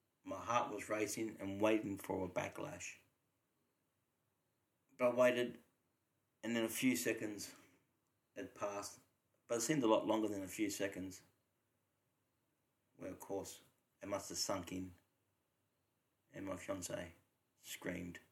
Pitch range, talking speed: 95-120 Hz, 135 wpm